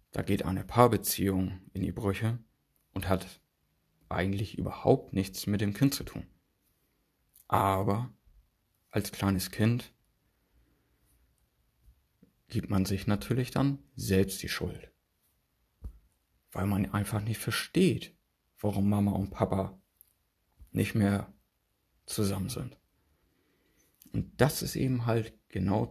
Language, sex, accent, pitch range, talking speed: German, male, German, 90-105 Hz, 110 wpm